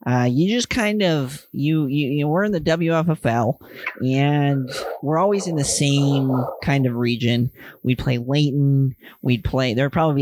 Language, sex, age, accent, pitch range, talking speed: English, male, 40-59, American, 130-175 Hz, 190 wpm